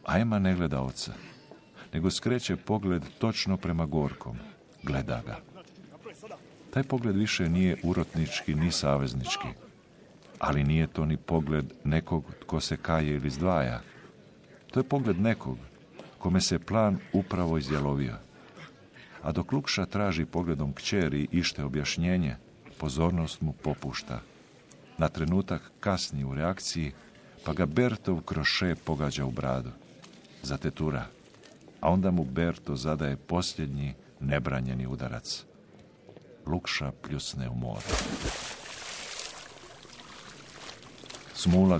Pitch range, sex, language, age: 70-90 Hz, male, Croatian, 50-69